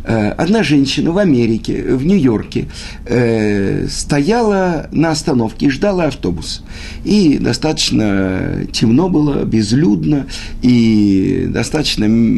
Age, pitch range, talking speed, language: 50-69, 95-145 Hz, 95 wpm, Russian